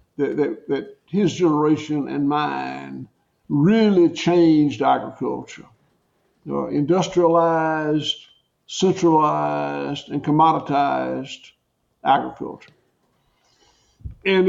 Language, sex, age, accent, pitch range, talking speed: English, male, 60-79, American, 140-170 Hz, 75 wpm